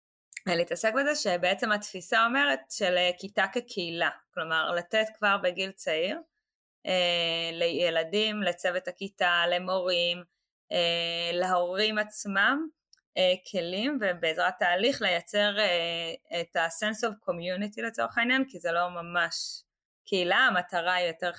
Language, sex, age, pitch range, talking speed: Hebrew, female, 20-39, 175-210 Hz, 100 wpm